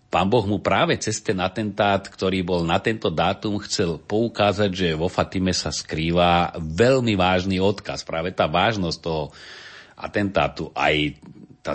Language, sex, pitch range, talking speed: Slovak, male, 85-105 Hz, 150 wpm